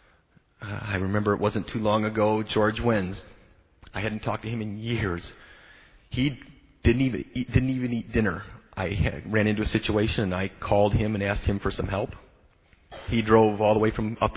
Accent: American